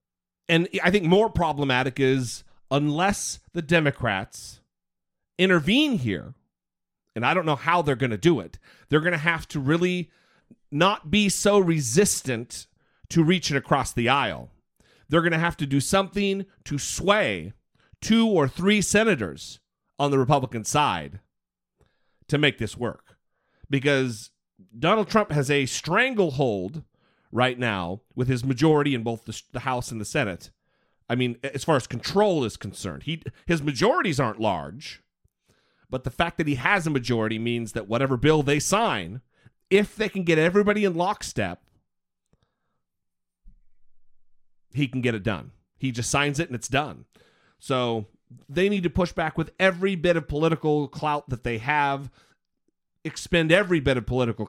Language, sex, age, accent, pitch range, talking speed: English, male, 40-59, American, 125-175 Hz, 155 wpm